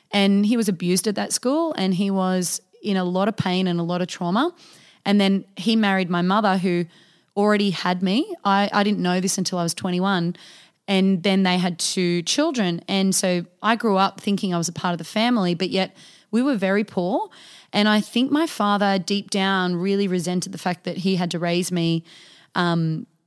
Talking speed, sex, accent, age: 210 wpm, female, Australian, 20-39